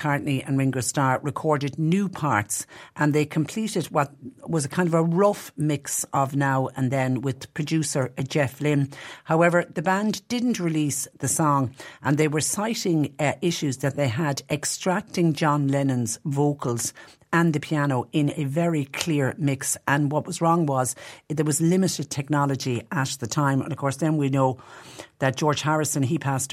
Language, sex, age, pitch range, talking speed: English, female, 50-69, 130-155 Hz, 175 wpm